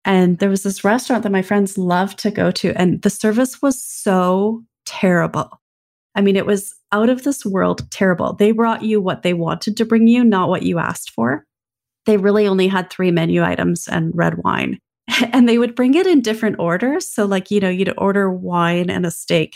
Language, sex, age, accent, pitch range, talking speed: English, female, 30-49, American, 175-215 Hz, 210 wpm